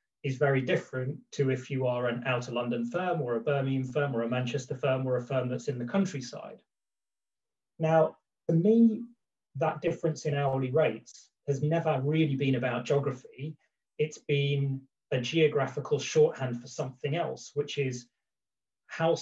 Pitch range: 125-155 Hz